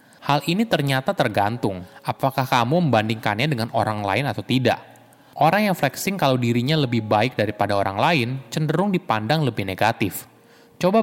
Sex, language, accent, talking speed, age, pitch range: male, Indonesian, native, 145 wpm, 20-39, 110-150 Hz